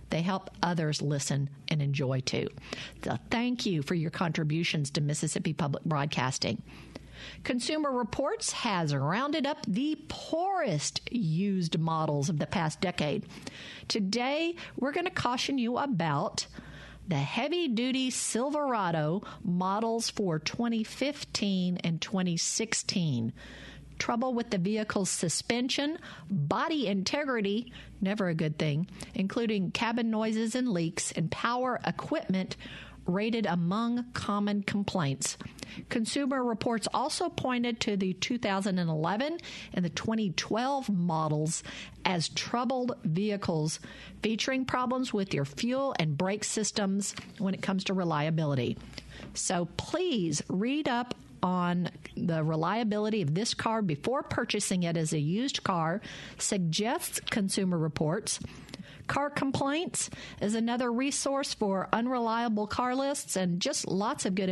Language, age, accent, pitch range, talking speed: English, 50-69, American, 165-240 Hz, 120 wpm